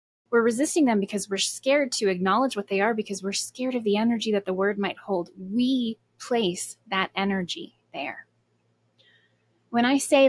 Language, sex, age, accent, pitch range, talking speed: English, female, 20-39, American, 200-245 Hz, 175 wpm